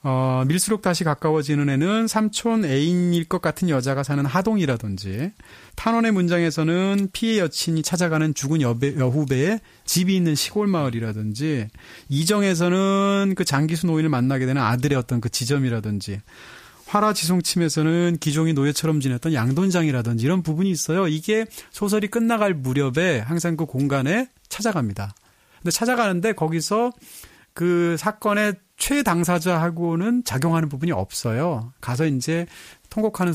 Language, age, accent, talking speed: English, 30-49, Korean, 115 wpm